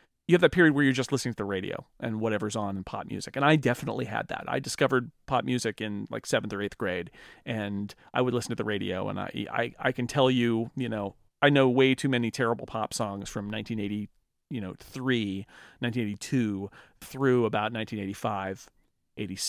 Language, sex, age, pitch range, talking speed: English, male, 40-59, 105-135 Hz, 200 wpm